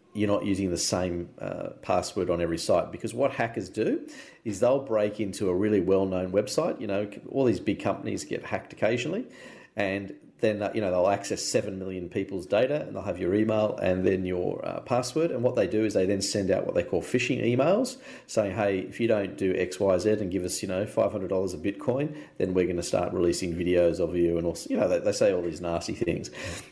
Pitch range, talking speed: 95-115 Hz, 230 wpm